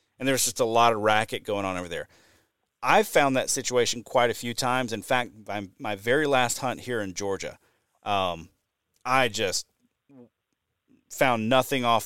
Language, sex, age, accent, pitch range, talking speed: English, male, 30-49, American, 105-130 Hz, 170 wpm